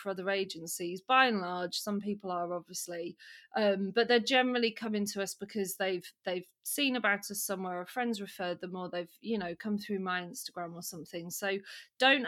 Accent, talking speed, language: British, 195 wpm, English